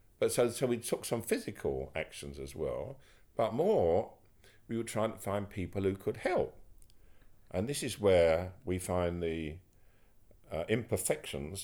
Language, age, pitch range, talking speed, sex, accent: English, 50-69, 85-105 Hz, 155 wpm, male, British